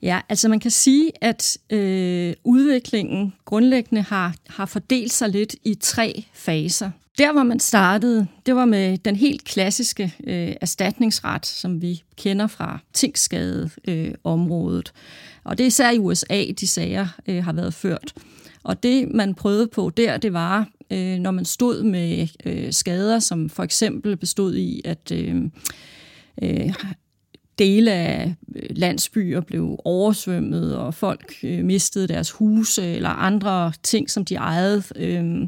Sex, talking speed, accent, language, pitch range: female, 145 wpm, native, Danish, 175-225 Hz